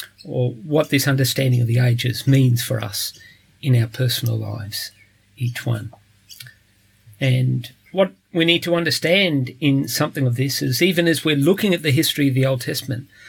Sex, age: male, 50-69